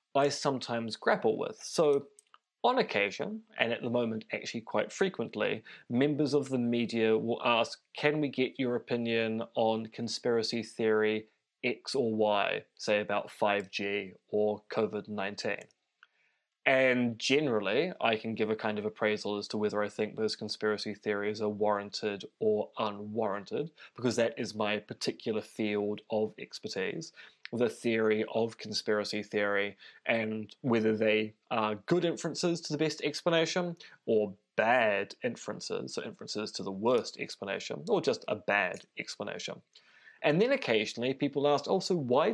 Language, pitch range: English, 105-135 Hz